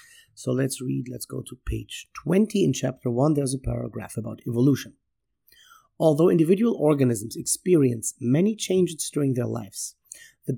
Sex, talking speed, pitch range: male, 145 wpm, 125-170 Hz